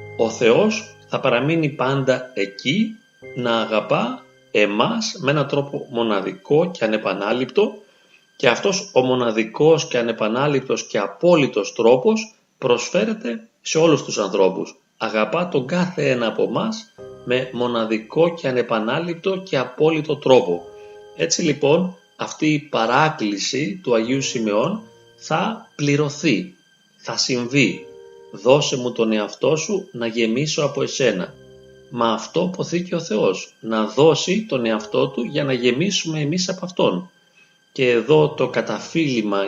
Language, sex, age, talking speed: Greek, male, 30-49, 130 wpm